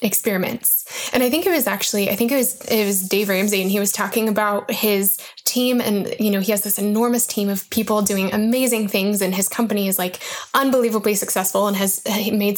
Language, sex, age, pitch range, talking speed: English, female, 10-29, 205-250 Hz, 215 wpm